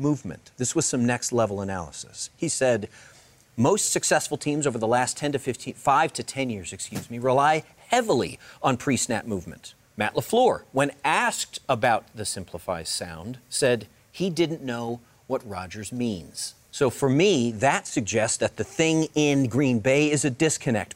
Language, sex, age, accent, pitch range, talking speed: English, male, 40-59, American, 120-145 Hz, 165 wpm